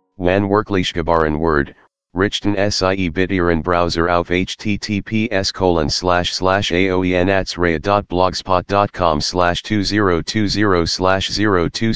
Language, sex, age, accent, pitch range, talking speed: English, male, 40-59, American, 80-100 Hz, 100 wpm